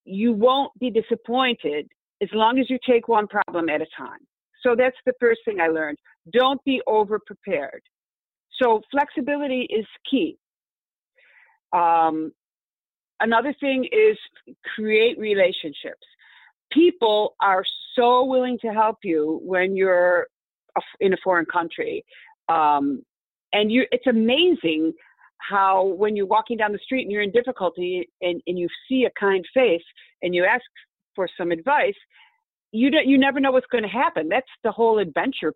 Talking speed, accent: 145 wpm, American